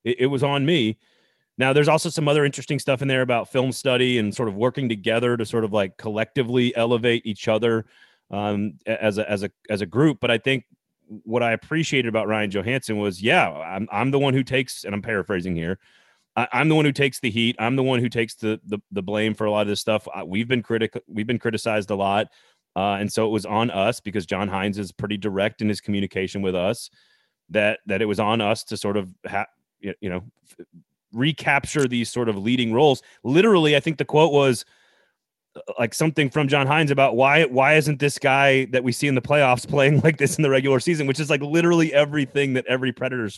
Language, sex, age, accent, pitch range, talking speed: English, male, 30-49, American, 105-140 Hz, 225 wpm